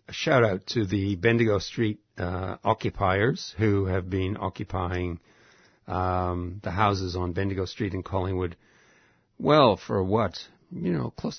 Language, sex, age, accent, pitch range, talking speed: English, male, 60-79, American, 95-110 Hz, 135 wpm